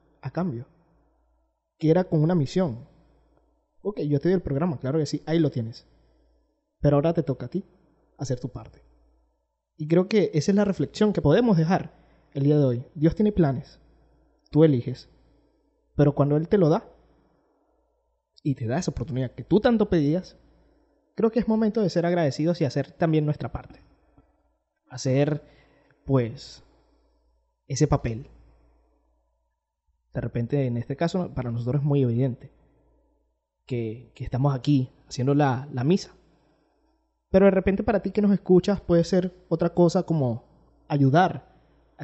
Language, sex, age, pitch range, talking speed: Spanish, male, 20-39, 135-180 Hz, 160 wpm